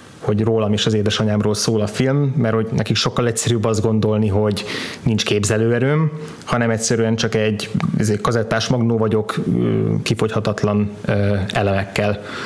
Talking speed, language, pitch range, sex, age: 140 wpm, Hungarian, 105-115 Hz, male, 20-39